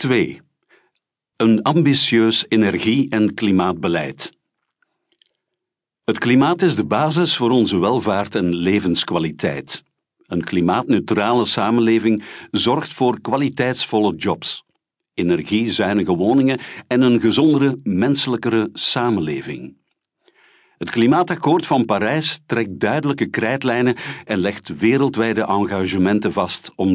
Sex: male